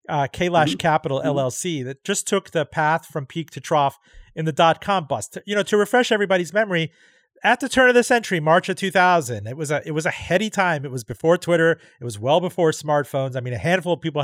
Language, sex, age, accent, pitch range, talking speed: English, male, 40-59, American, 150-190 Hz, 235 wpm